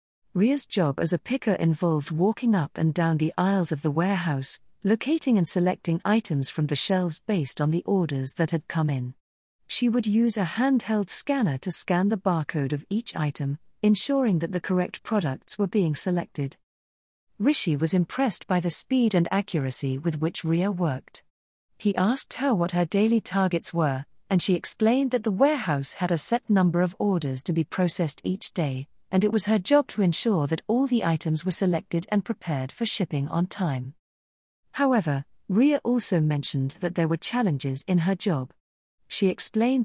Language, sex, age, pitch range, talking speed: English, female, 40-59, 155-210 Hz, 180 wpm